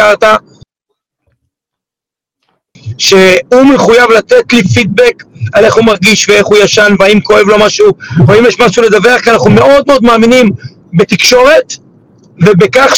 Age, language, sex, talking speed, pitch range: 60-79, Hebrew, male, 135 wpm, 210-275 Hz